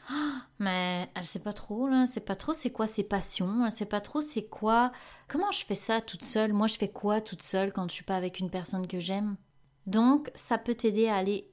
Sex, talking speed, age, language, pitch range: female, 260 wpm, 30-49, French, 185-225 Hz